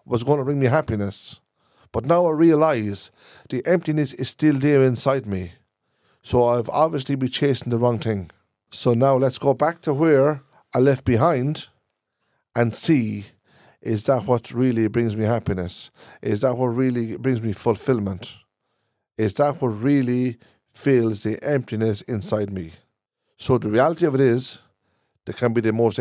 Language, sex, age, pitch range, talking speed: English, male, 50-69, 110-140 Hz, 165 wpm